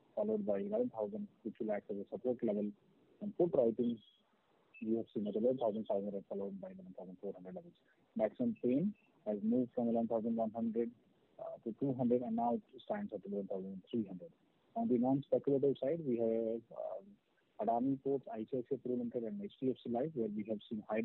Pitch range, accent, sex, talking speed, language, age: 110-140 Hz, Indian, male, 160 wpm, English, 30-49